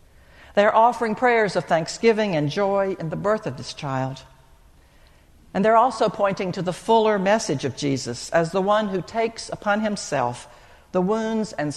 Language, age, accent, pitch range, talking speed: English, 60-79, American, 135-205 Hz, 170 wpm